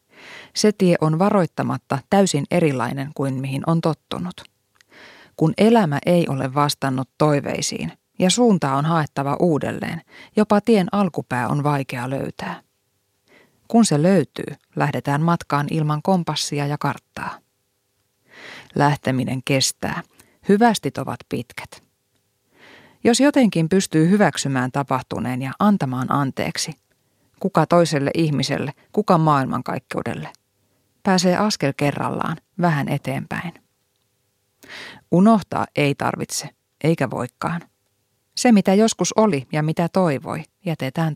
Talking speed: 105 wpm